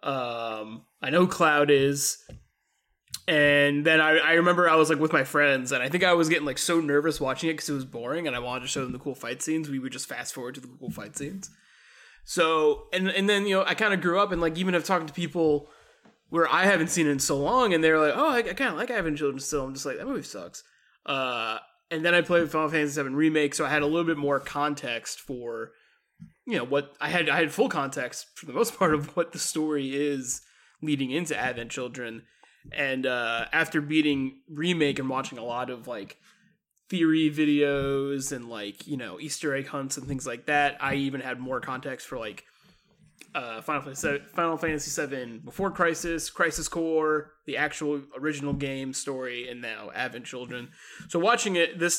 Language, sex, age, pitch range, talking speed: English, male, 20-39, 135-165 Hz, 215 wpm